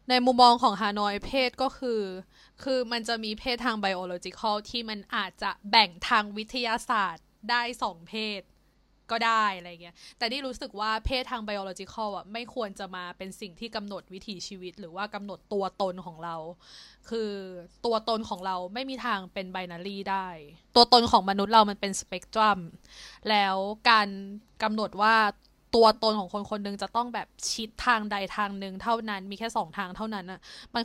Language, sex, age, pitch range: Thai, female, 20-39, 195-235 Hz